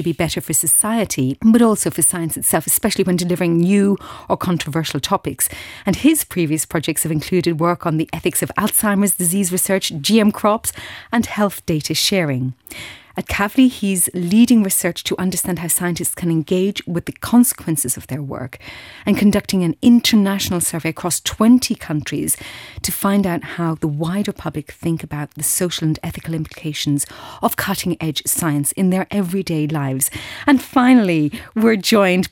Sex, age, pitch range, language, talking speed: female, 30-49, 160-220 Hz, English, 160 wpm